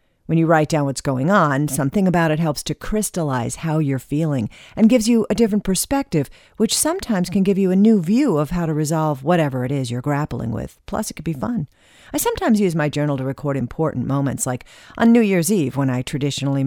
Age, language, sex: 50-69, English, female